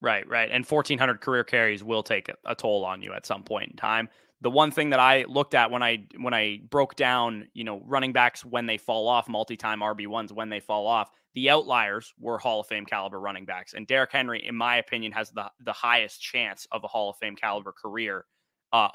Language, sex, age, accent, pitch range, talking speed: English, male, 20-39, American, 110-130 Hz, 235 wpm